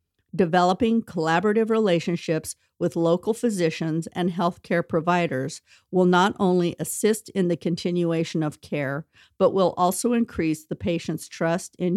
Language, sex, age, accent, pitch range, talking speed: English, female, 50-69, American, 160-195 Hz, 135 wpm